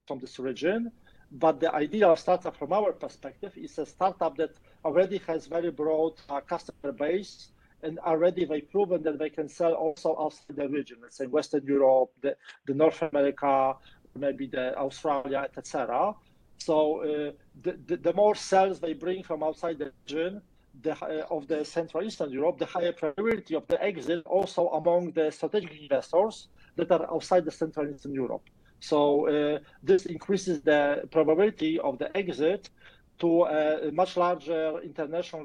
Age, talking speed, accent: 40-59, 165 wpm, Polish